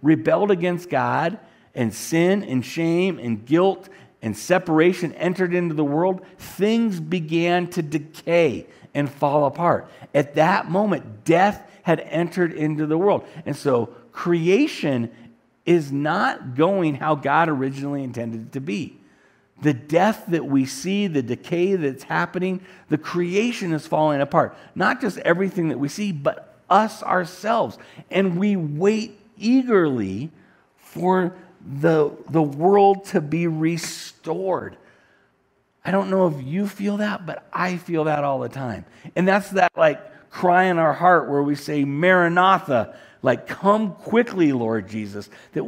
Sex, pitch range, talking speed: male, 145-185 Hz, 145 wpm